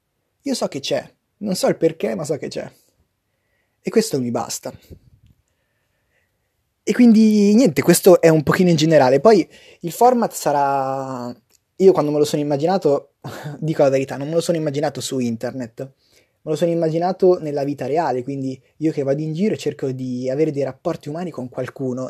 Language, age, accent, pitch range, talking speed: Italian, 20-39, native, 130-170 Hz, 180 wpm